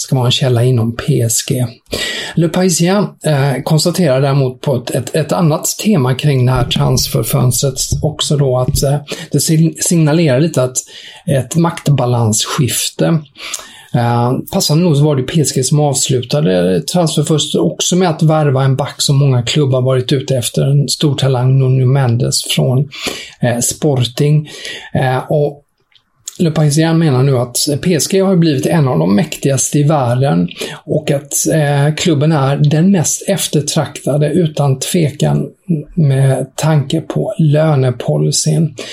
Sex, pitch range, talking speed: male, 130-160 Hz, 140 wpm